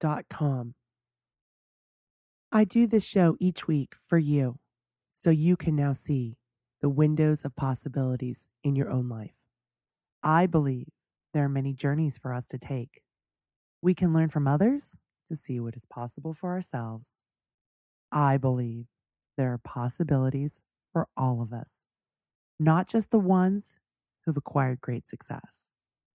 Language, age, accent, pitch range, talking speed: English, 30-49, American, 125-160 Hz, 140 wpm